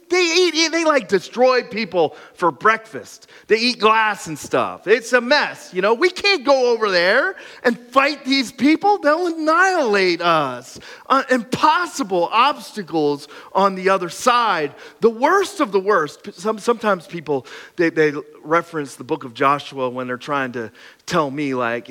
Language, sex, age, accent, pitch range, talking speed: English, male, 30-49, American, 150-220 Hz, 160 wpm